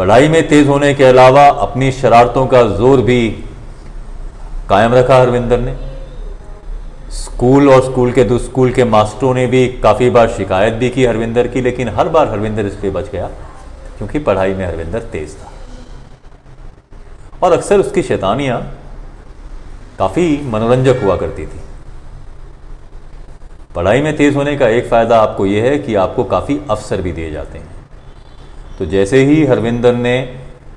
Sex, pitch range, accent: male, 95-125 Hz, native